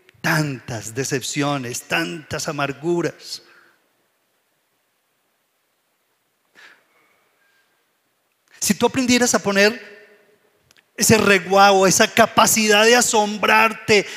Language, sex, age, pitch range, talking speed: Spanish, male, 40-59, 160-225 Hz, 65 wpm